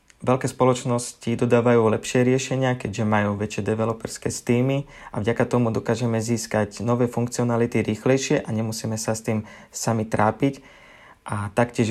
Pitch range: 115-130 Hz